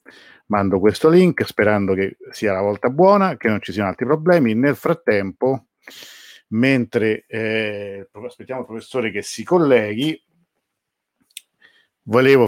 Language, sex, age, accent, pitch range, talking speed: Italian, male, 50-69, native, 100-125 Hz, 125 wpm